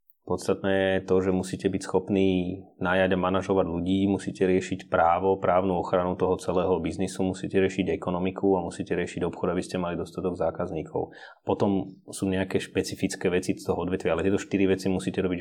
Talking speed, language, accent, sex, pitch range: 175 wpm, Czech, native, male, 90-95 Hz